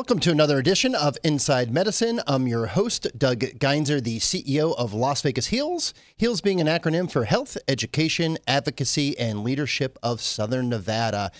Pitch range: 135-200 Hz